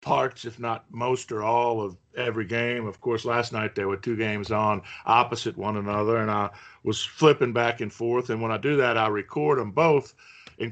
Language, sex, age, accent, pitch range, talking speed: English, male, 50-69, American, 110-125 Hz, 215 wpm